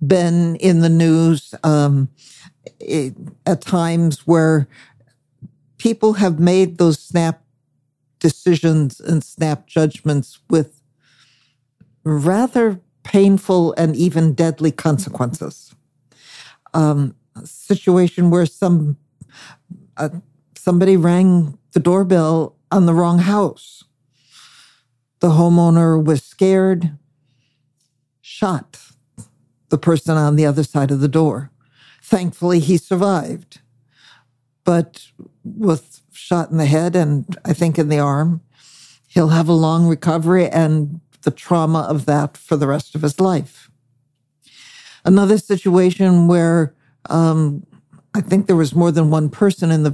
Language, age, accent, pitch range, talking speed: English, 60-79, American, 145-180 Hz, 120 wpm